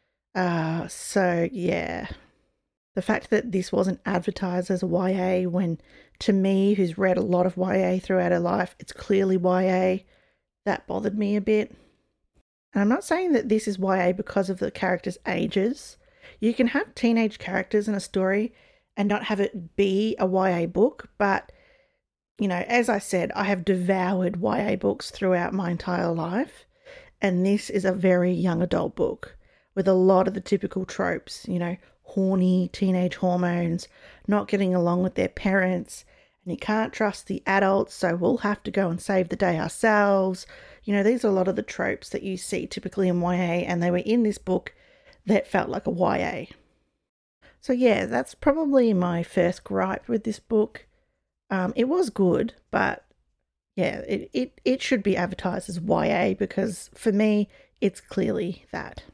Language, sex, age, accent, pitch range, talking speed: English, female, 40-59, Australian, 180-215 Hz, 175 wpm